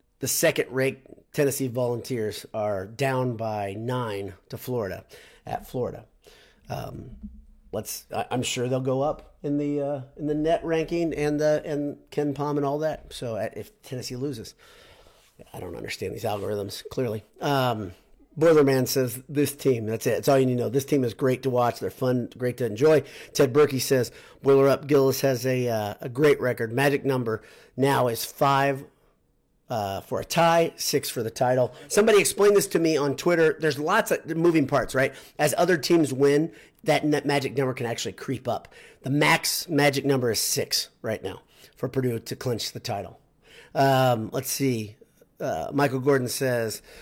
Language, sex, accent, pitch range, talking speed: English, male, American, 125-145 Hz, 175 wpm